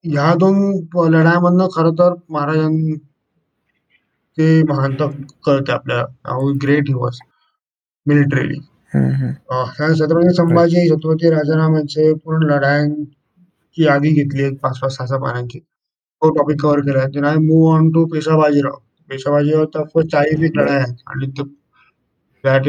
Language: Marathi